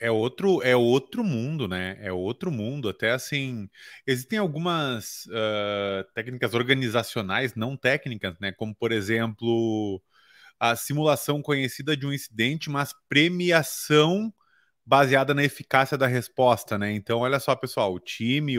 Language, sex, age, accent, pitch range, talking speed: Portuguese, male, 30-49, Brazilian, 110-150 Hz, 135 wpm